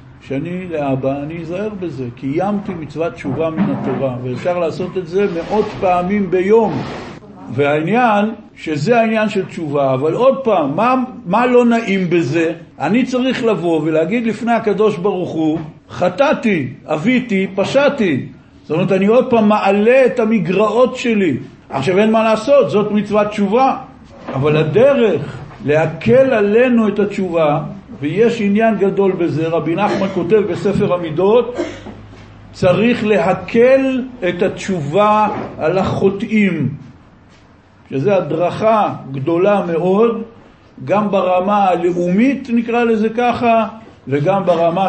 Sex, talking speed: male, 120 wpm